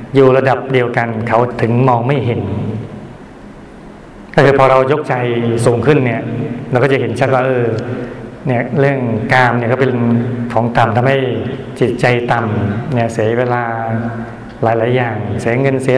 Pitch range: 120-140 Hz